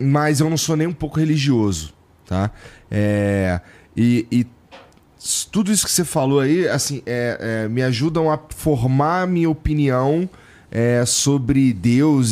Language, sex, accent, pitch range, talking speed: Portuguese, male, Brazilian, 105-145 Hz, 145 wpm